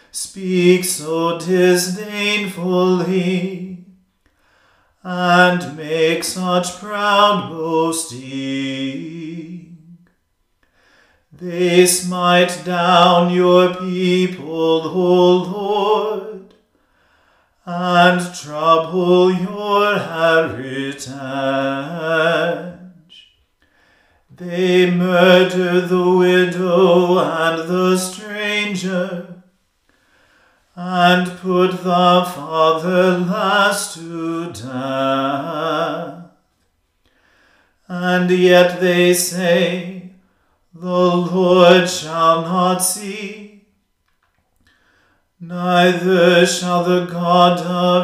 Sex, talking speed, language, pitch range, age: male, 60 wpm, English, 165-180 Hz, 40-59